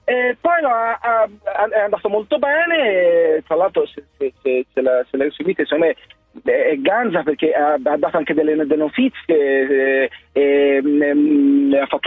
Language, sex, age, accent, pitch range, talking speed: Italian, male, 40-59, native, 175-280 Hz, 155 wpm